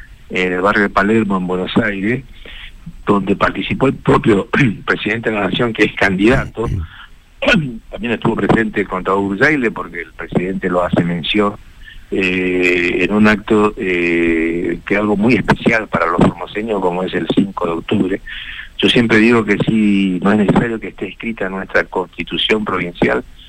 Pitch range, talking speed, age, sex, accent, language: 95-110 Hz, 160 wpm, 50-69, male, Argentinian, Spanish